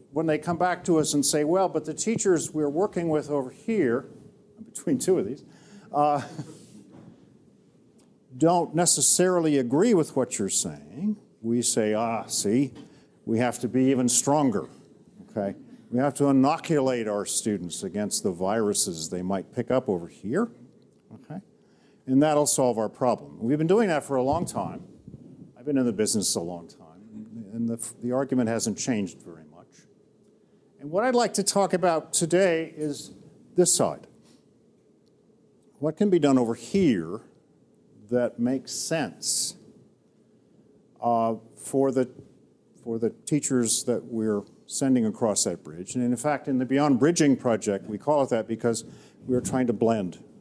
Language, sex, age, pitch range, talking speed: English, male, 50-69, 115-160 Hz, 160 wpm